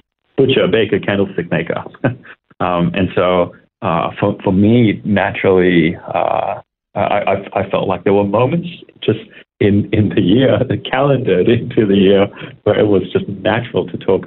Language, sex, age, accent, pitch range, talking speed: English, male, 30-49, American, 90-125 Hz, 165 wpm